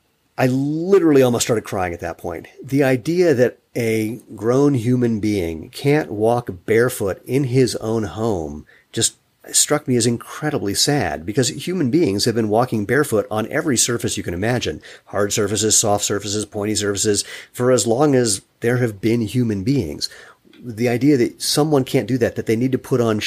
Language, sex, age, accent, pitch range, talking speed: English, male, 40-59, American, 100-130 Hz, 180 wpm